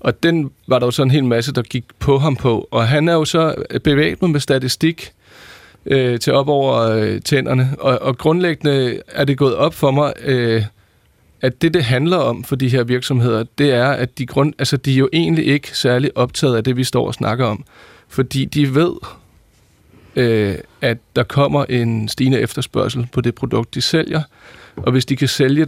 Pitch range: 115-140 Hz